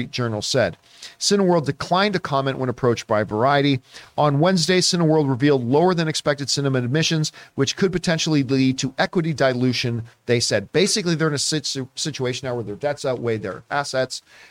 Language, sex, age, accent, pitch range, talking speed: English, male, 40-59, American, 130-170 Hz, 165 wpm